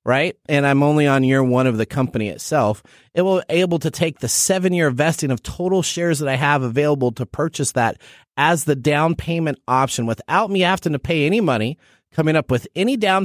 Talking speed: 215 wpm